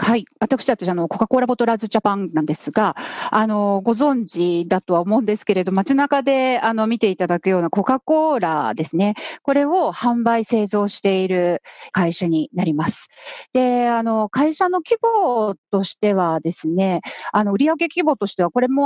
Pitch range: 175-260 Hz